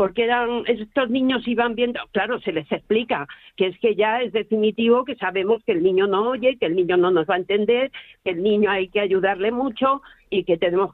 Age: 50-69